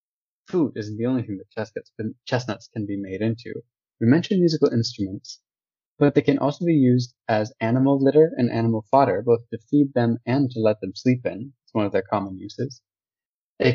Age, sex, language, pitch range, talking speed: 20-39, male, English, 110-140 Hz, 190 wpm